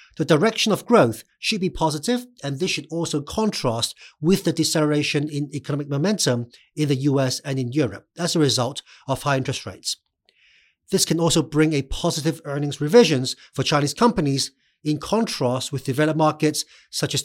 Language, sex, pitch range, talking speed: English, male, 135-165 Hz, 170 wpm